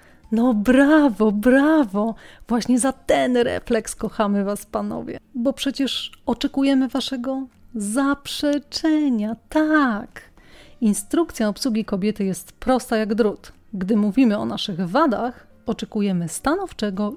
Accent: native